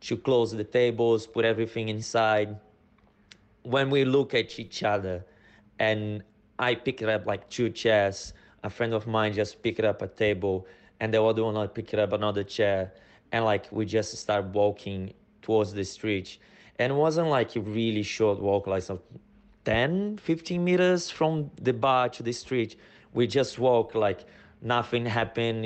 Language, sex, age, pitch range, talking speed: English, male, 20-39, 105-120 Hz, 165 wpm